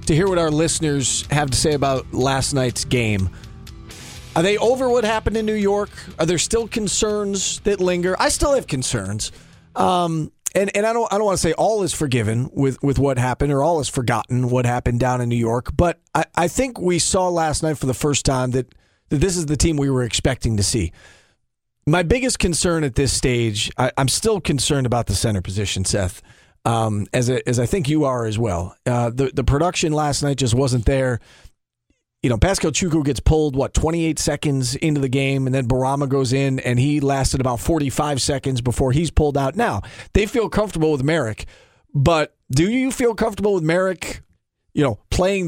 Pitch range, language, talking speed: 125-165 Hz, English, 205 wpm